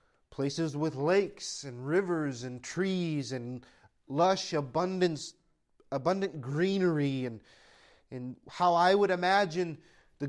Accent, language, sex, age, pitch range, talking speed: American, English, male, 30-49, 140-185 Hz, 110 wpm